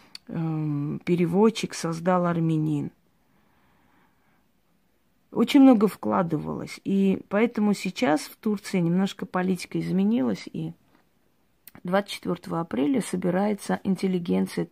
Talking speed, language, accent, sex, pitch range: 75 wpm, Russian, native, female, 165-200 Hz